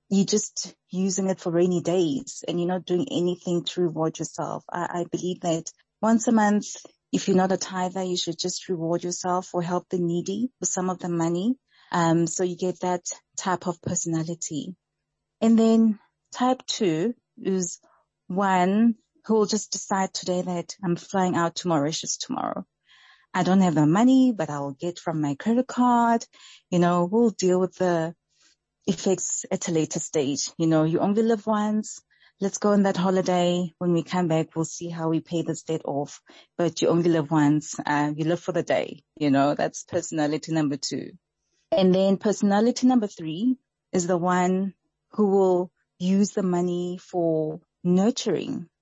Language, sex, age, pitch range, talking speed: English, female, 30-49, 170-195 Hz, 180 wpm